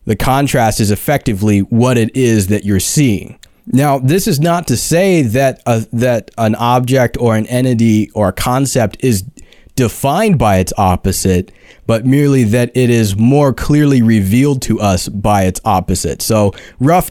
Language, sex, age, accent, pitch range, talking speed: English, male, 30-49, American, 105-130 Hz, 165 wpm